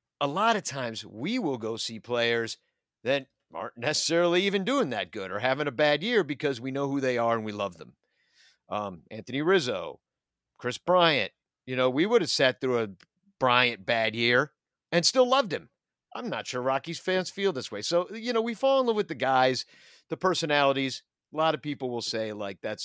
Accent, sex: American, male